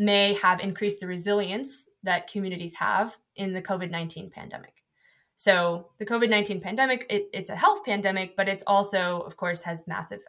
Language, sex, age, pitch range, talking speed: English, female, 20-39, 175-210 Hz, 155 wpm